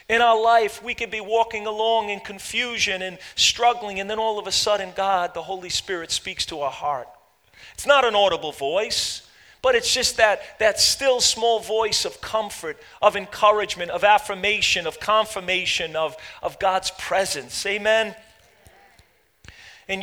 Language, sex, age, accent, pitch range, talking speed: English, male, 40-59, American, 180-235 Hz, 160 wpm